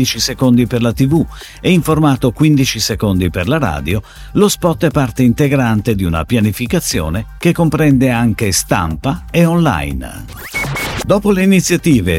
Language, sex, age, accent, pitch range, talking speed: Italian, male, 50-69, native, 100-155 Hz, 145 wpm